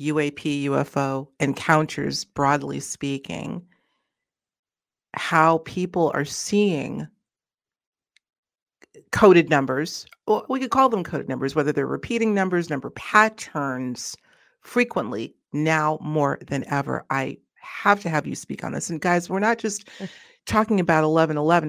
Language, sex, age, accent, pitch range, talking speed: English, female, 40-59, American, 145-190 Hz, 125 wpm